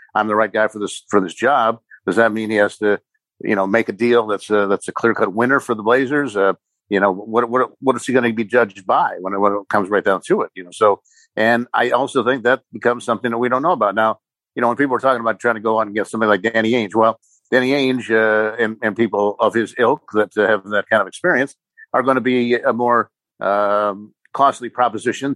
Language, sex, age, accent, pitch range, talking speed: English, male, 50-69, American, 105-120 Hz, 265 wpm